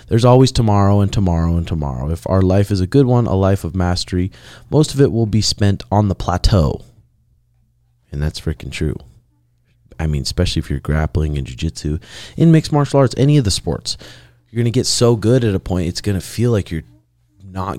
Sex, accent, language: male, American, English